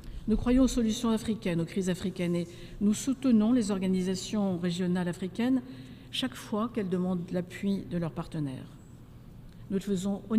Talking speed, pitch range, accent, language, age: 155 wpm, 180-225 Hz, French, French, 60-79